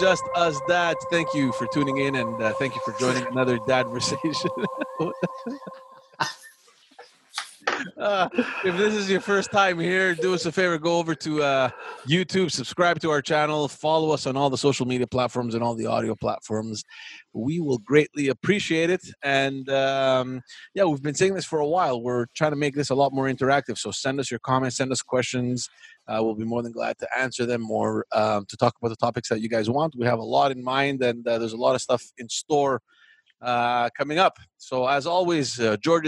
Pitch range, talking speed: 120-170 Hz, 210 wpm